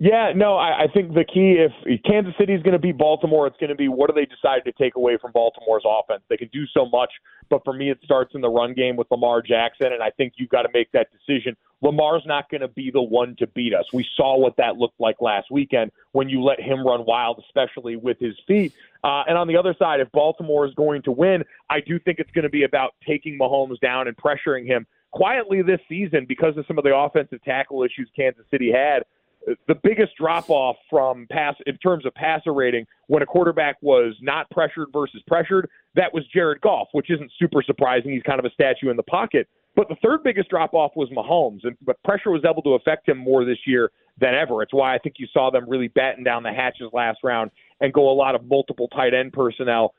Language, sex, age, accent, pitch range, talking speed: English, male, 30-49, American, 125-160 Hz, 240 wpm